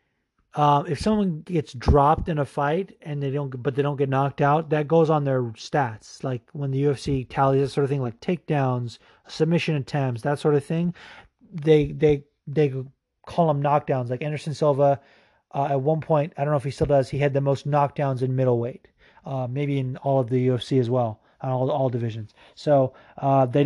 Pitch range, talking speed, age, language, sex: 130-160 Hz, 210 wpm, 30-49, English, male